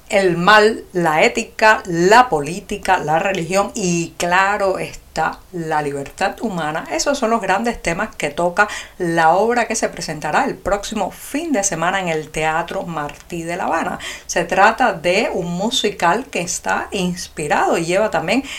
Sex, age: female, 50-69